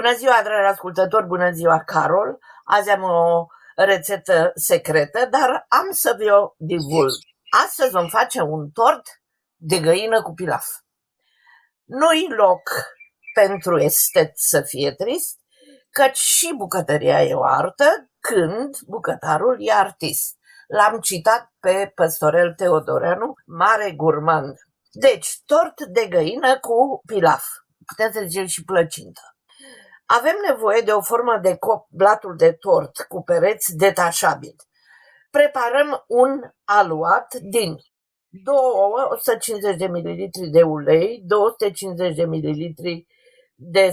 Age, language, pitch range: 50-69, Romanian, 175-260 Hz